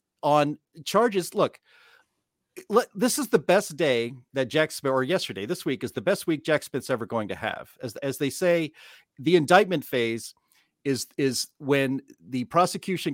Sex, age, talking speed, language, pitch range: male, 40-59, 175 wpm, English, 135-185 Hz